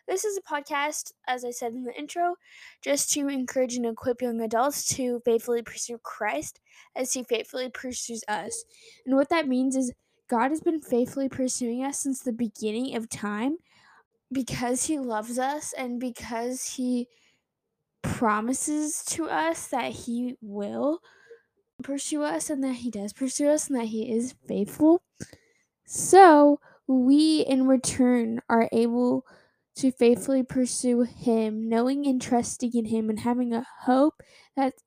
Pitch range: 240-300 Hz